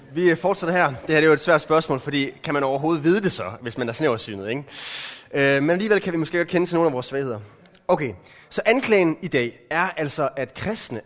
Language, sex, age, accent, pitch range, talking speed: Danish, male, 20-39, native, 120-175 Hz, 235 wpm